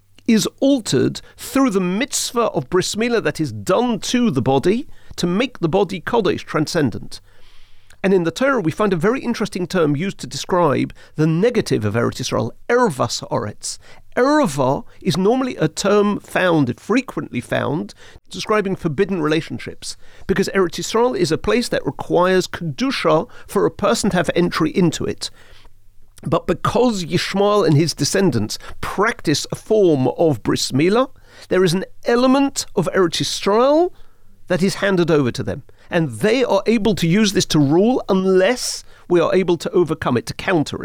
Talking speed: 160 wpm